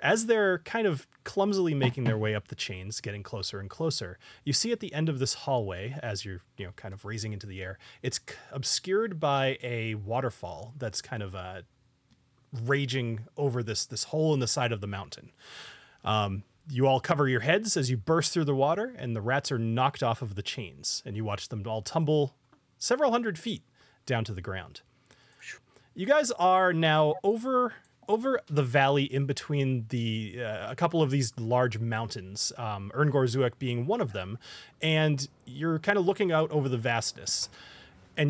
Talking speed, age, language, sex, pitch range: 185 wpm, 30-49, English, male, 115-150 Hz